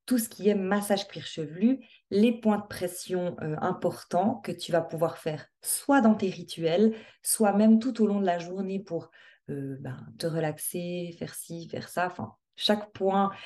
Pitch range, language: 165-215 Hz, French